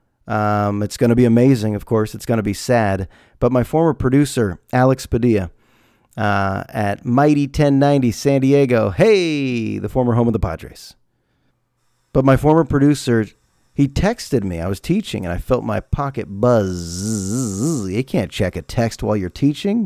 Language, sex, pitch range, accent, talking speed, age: English, male, 105-135 Hz, American, 170 wpm, 40-59